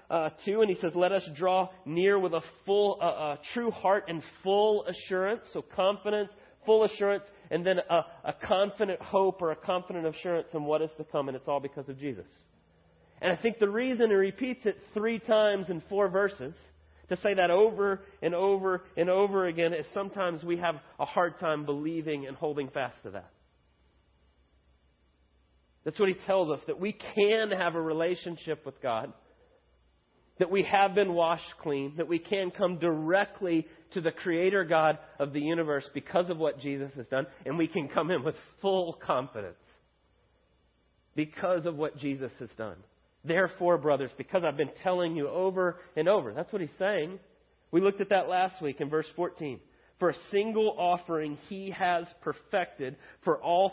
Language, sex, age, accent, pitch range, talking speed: English, male, 30-49, American, 145-195 Hz, 180 wpm